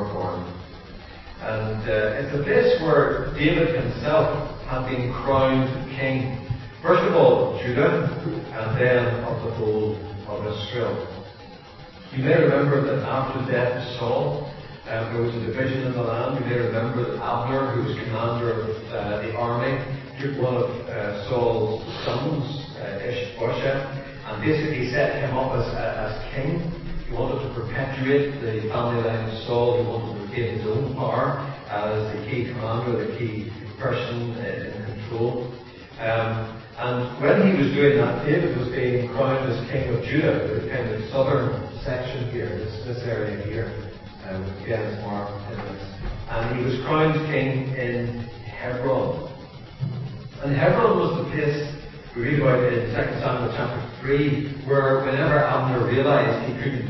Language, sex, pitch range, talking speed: English, male, 115-135 Hz, 160 wpm